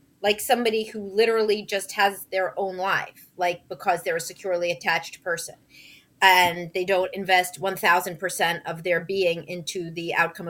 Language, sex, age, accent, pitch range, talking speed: English, female, 30-49, American, 190-235 Hz, 155 wpm